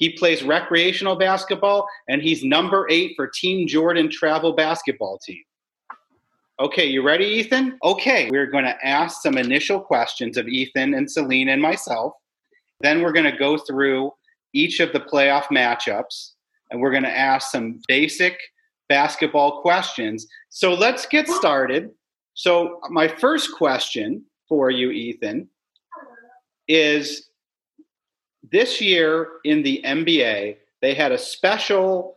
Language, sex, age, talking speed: English, male, 40-59, 135 wpm